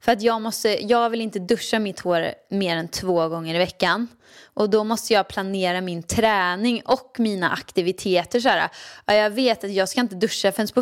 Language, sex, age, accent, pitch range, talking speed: Swedish, female, 20-39, native, 180-225 Hz, 205 wpm